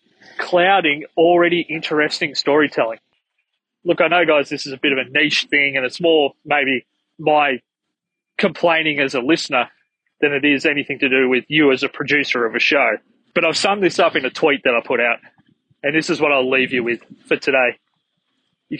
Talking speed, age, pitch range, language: 200 wpm, 20-39, 140-175 Hz, English